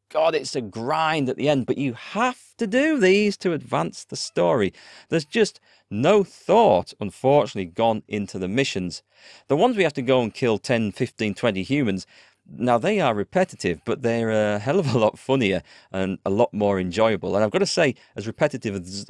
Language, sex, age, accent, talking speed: English, male, 40-59, British, 200 wpm